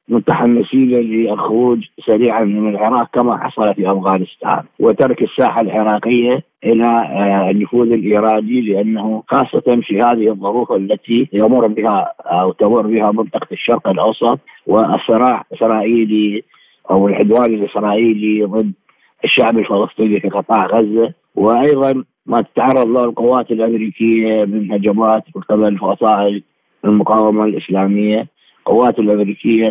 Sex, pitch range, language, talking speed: male, 105-115 Hz, Arabic, 110 wpm